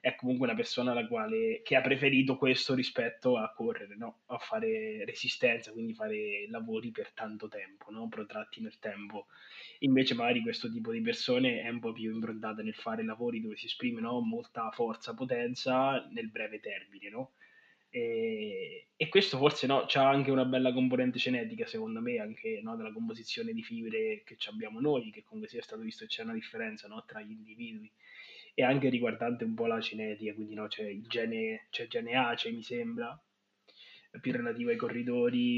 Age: 20-39